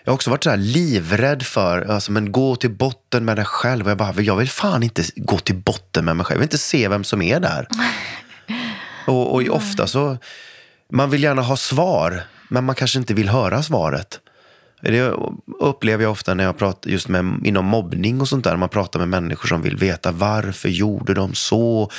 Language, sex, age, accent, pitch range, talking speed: English, male, 30-49, Swedish, 95-125 Hz, 205 wpm